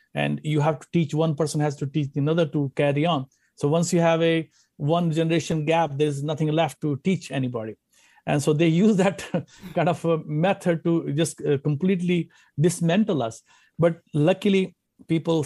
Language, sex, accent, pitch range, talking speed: English, male, Indian, 140-175 Hz, 170 wpm